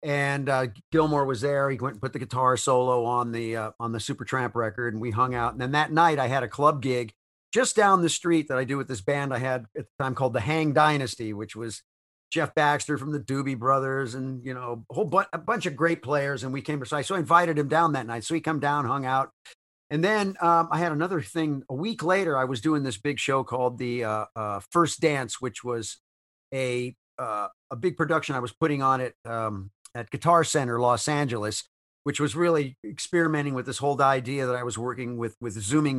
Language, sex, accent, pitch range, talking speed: English, male, American, 125-150 Hz, 240 wpm